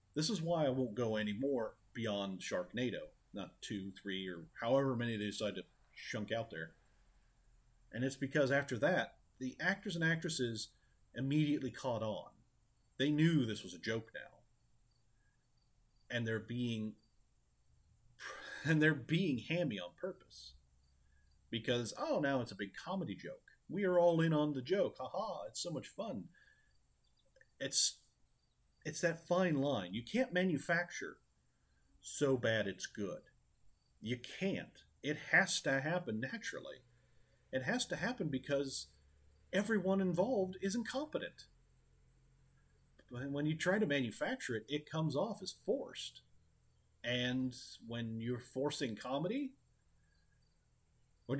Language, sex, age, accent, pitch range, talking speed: English, male, 40-59, American, 110-170 Hz, 135 wpm